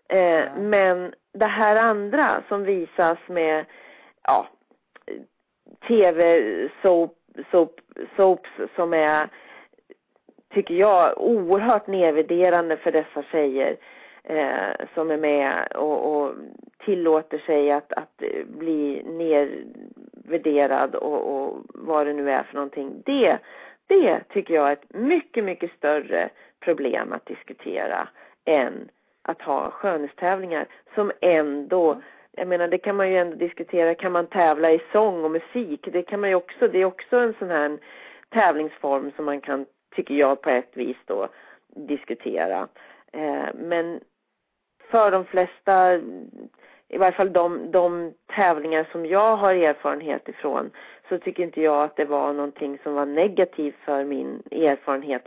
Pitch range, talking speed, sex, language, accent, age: 150-195 Hz, 130 wpm, female, English, Swedish, 40-59